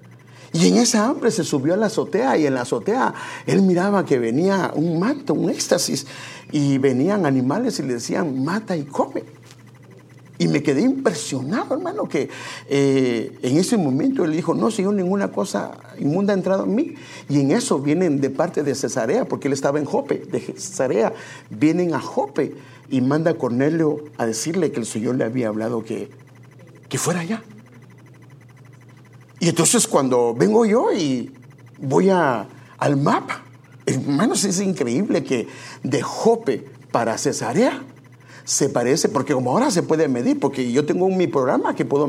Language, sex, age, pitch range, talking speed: English, male, 50-69, 130-195 Hz, 165 wpm